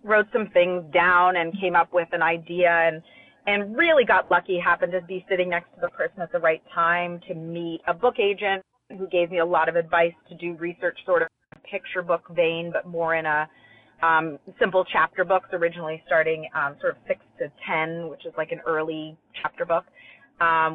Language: English